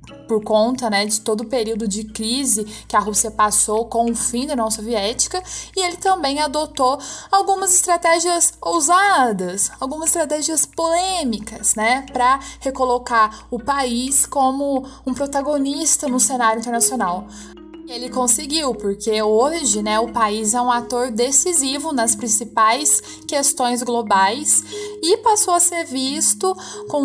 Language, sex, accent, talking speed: Portuguese, female, Brazilian, 135 wpm